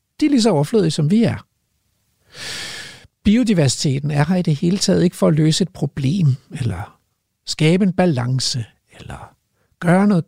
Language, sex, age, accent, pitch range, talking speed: Danish, male, 60-79, native, 135-190 Hz, 165 wpm